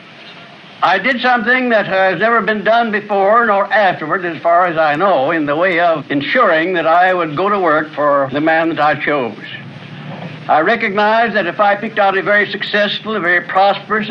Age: 60-79